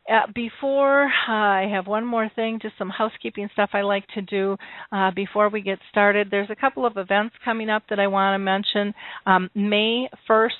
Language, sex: English, female